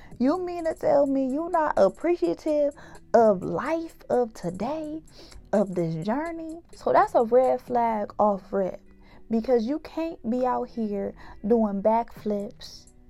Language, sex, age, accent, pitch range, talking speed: English, female, 20-39, American, 210-270 Hz, 135 wpm